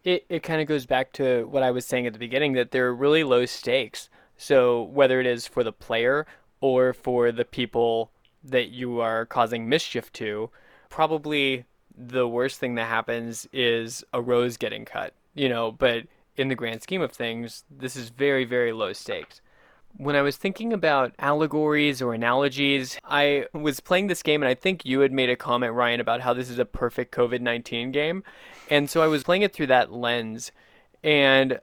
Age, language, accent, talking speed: 20-39, English, American, 195 wpm